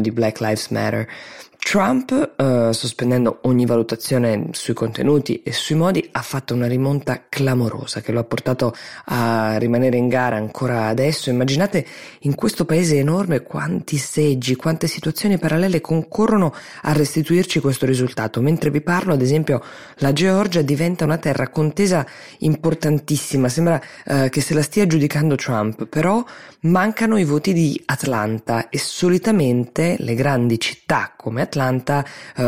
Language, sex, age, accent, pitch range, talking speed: Italian, female, 20-39, native, 120-160 Hz, 140 wpm